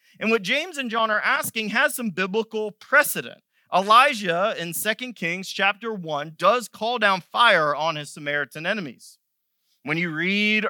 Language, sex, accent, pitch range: English, male, American, 185-240 Hz